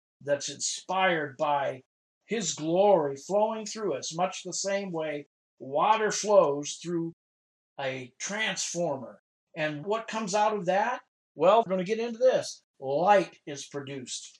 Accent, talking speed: American, 140 wpm